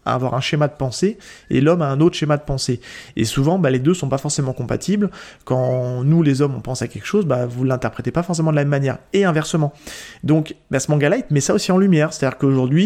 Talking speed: 265 wpm